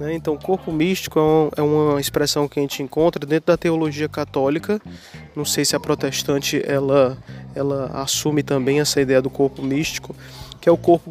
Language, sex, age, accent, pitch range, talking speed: Portuguese, male, 20-39, Brazilian, 145-170 Hz, 180 wpm